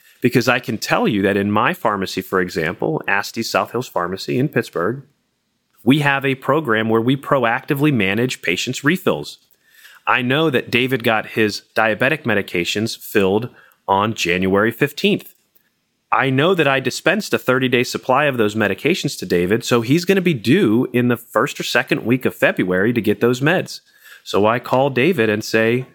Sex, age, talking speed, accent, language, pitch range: male, 30-49, 175 wpm, American, English, 110-135 Hz